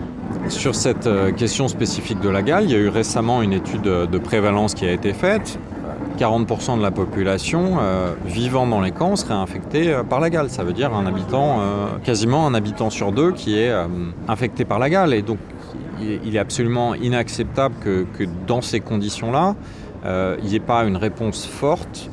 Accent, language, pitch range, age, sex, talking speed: French, French, 95-120 Hz, 30-49, male, 185 wpm